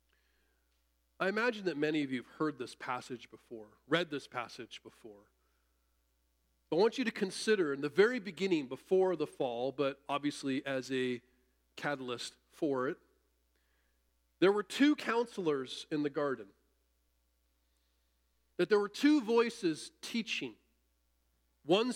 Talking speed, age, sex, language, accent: 130 wpm, 40-59, male, English, American